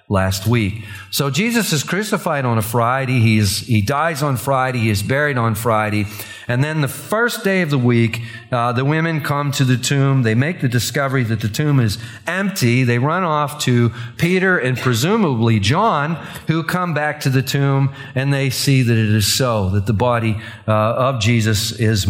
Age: 40-59